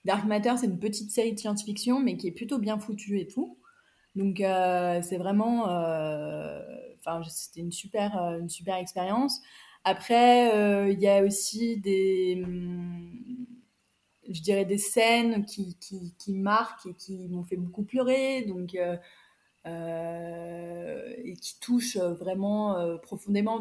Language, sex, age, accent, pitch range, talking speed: French, female, 20-39, French, 175-215 Hz, 150 wpm